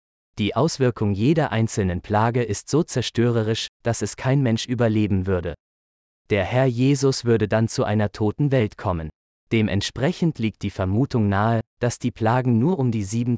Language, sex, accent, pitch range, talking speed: German, male, German, 100-125 Hz, 160 wpm